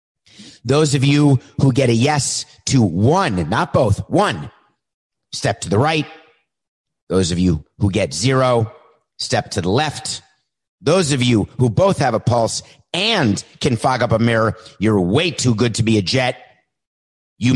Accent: American